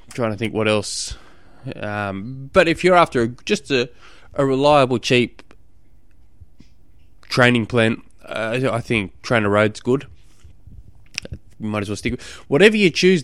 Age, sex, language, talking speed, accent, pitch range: 20-39, male, English, 150 wpm, Australian, 110-155 Hz